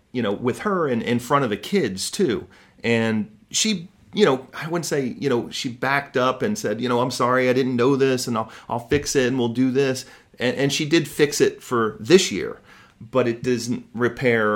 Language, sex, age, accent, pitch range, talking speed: English, male, 30-49, American, 105-130 Hz, 225 wpm